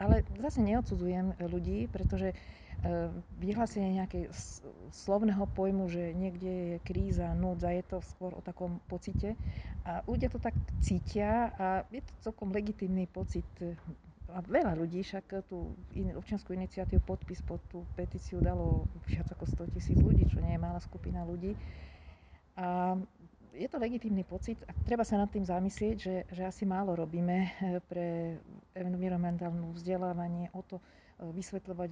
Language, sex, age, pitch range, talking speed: Slovak, female, 40-59, 170-190 Hz, 145 wpm